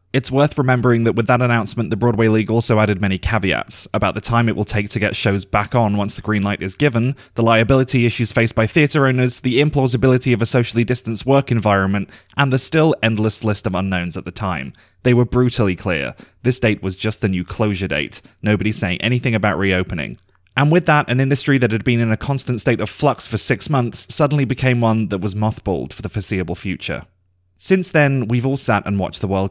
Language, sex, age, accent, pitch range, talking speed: English, male, 20-39, British, 95-125 Hz, 220 wpm